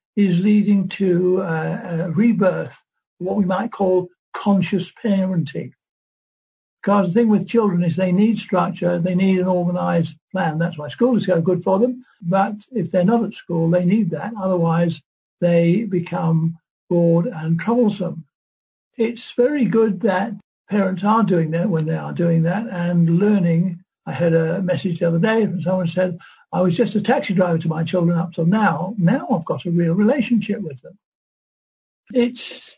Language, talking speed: English, 170 wpm